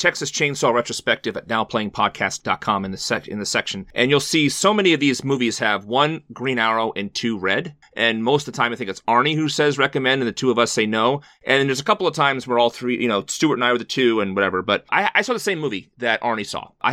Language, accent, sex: English, American, male